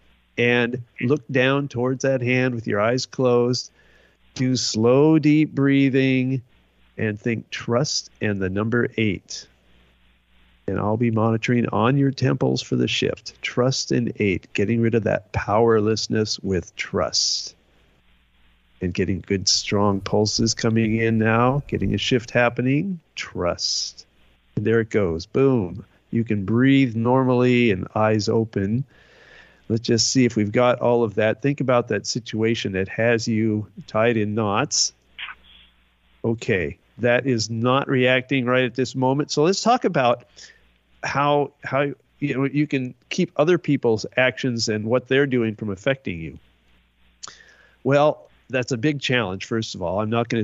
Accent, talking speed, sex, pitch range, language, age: American, 150 wpm, male, 105-130 Hz, English, 50-69